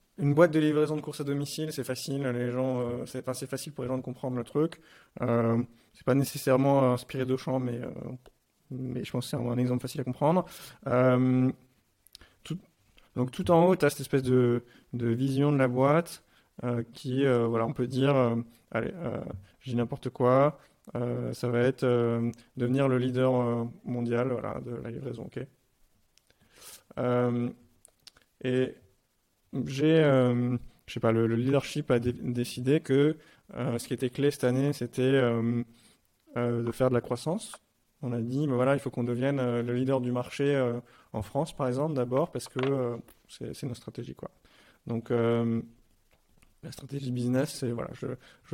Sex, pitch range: male, 120-140 Hz